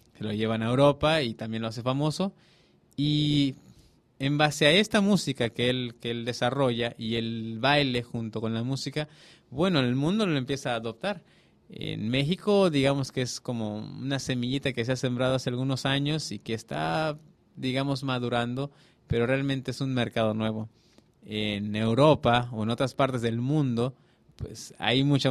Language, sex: English, male